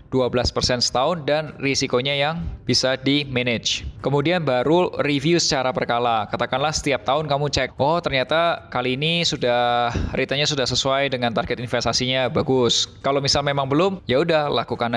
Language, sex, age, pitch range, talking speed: Indonesian, male, 20-39, 125-155 Hz, 150 wpm